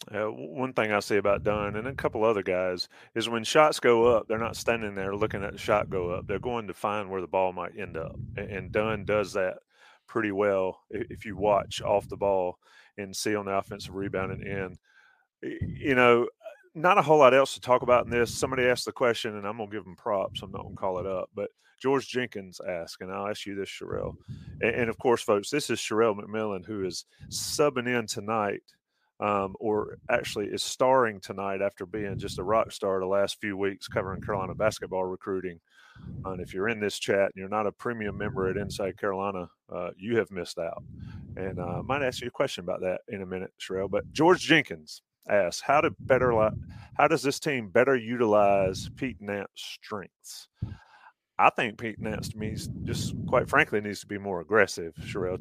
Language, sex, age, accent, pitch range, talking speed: English, male, 30-49, American, 95-120 Hz, 215 wpm